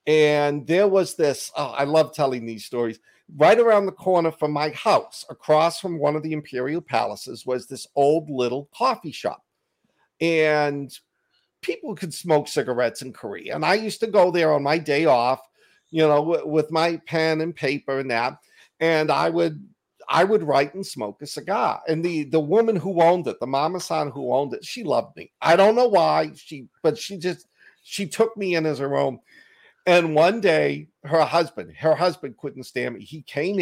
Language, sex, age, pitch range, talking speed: English, male, 50-69, 135-175 Hz, 195 wpm